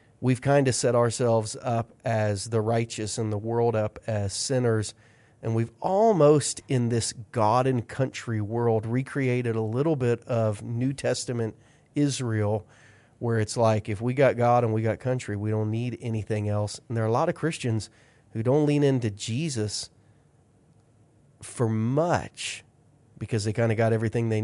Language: English